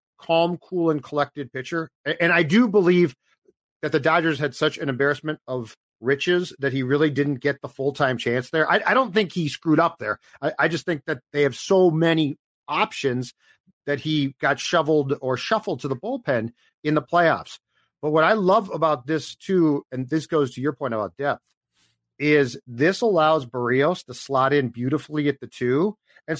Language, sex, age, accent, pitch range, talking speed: English, male, 40-59, American, 145-200 Hz, 190 wpm